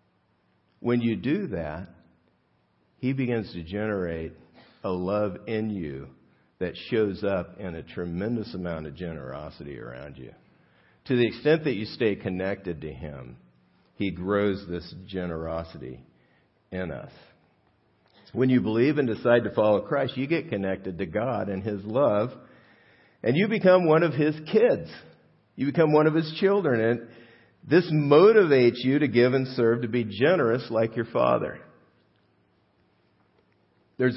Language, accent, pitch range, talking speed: English, American, 85-120 Hz, 145 wpm